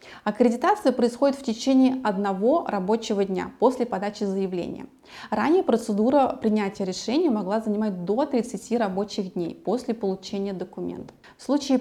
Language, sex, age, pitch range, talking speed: Russian, female, 20-39, 205-250 Hz, 125 wpm